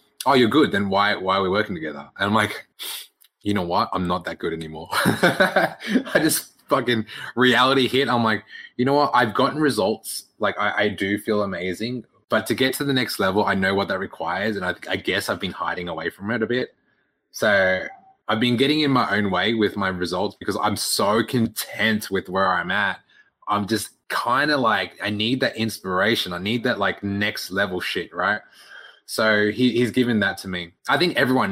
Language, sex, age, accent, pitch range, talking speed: English, male, 20-39, Australian, 100-125 Hz, 210 wpm